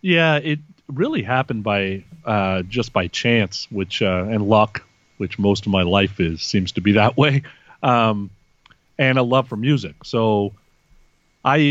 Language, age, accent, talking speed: English, 40-59, American, 165 wpm